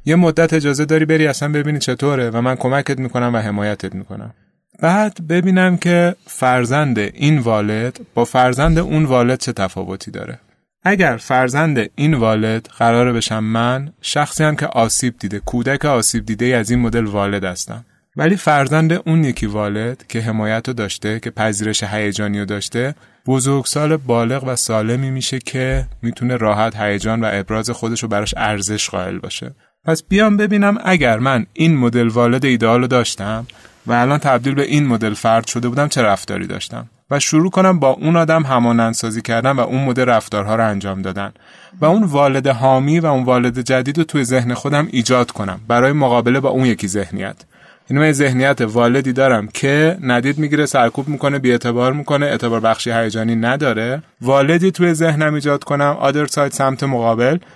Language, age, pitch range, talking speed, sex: Persian, 30-49, 115-145 Hz, 165 wpm, male